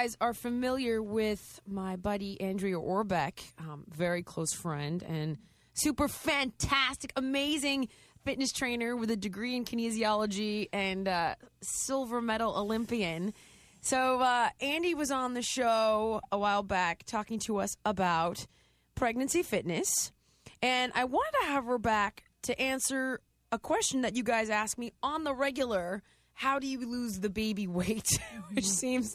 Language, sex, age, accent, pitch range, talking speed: English, female, 20-39, American, 195-250 Hz, 145 wpm